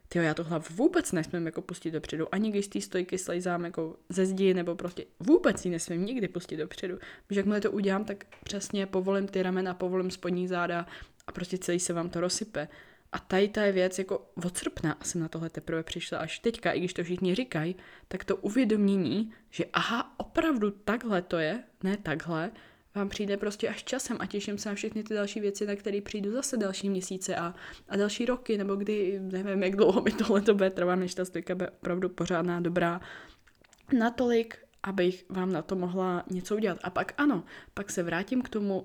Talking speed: 200 wpm